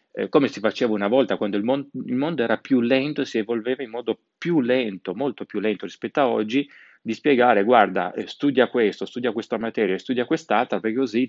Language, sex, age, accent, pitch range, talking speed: Italian, male, 30-49, native, 105-135 Hz, 200 wpm